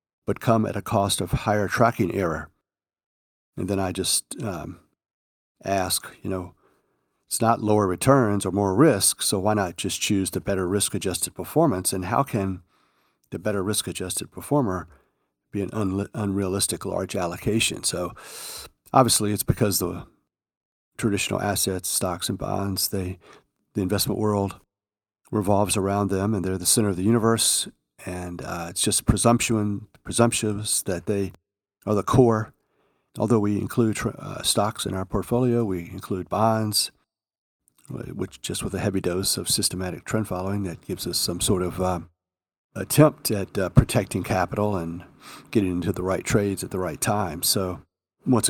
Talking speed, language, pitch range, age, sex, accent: 155 wpm, English, 95-110 Hz, 50-69, male, American